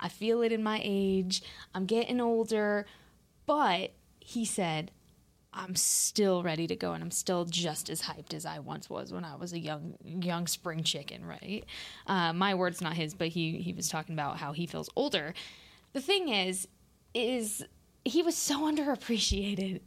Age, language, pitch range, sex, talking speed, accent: 20-39, English, 185-260 Hz, female, 180 wpm, American